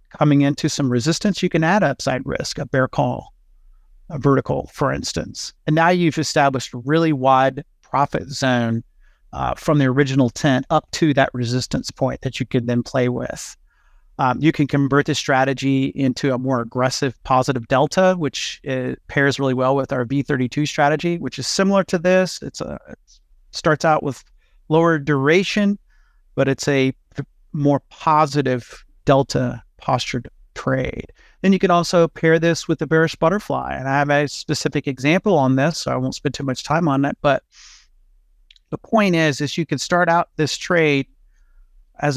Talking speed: 175 wpm